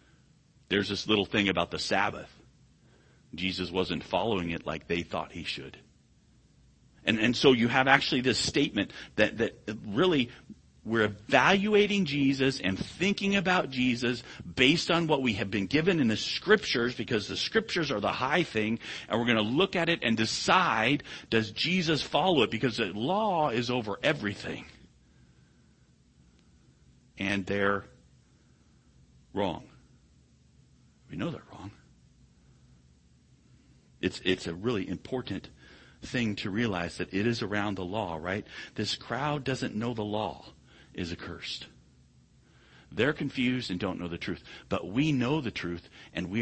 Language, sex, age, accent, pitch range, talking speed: English, male, 40-59, American, 85-130 Hz, 145 wpm